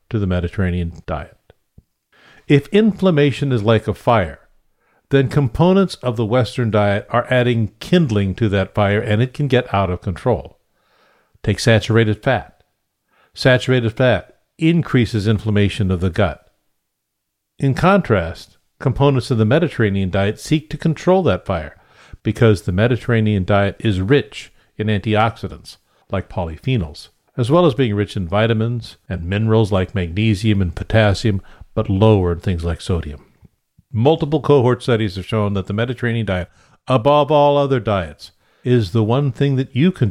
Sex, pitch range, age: male, 100-130 Hz, 50-69